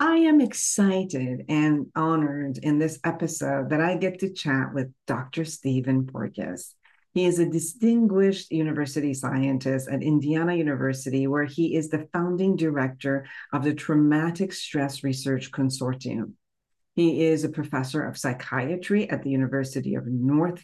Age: 50-69